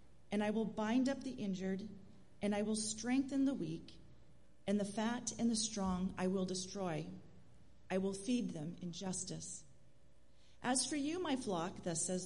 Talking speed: 170 wpm